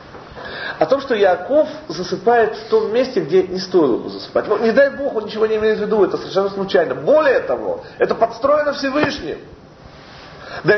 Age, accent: 40-59, native